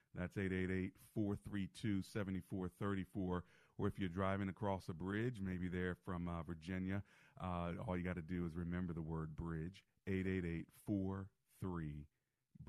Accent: American